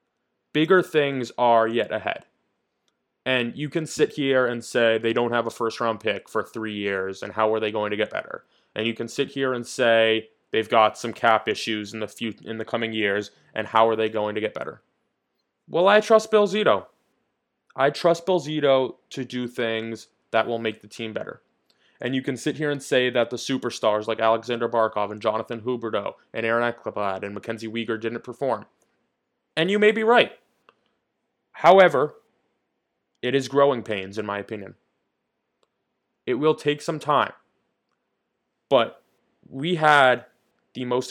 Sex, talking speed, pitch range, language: male, 175 wpm, 110-130 Hz, English